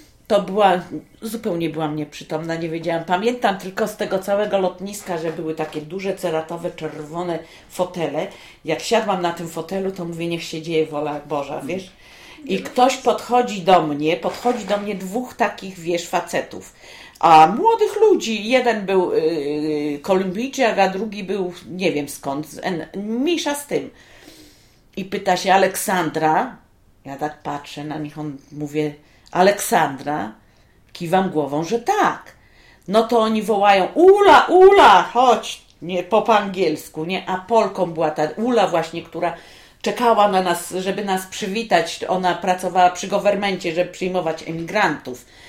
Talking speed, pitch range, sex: 145 wpm, 160-205 Hz, female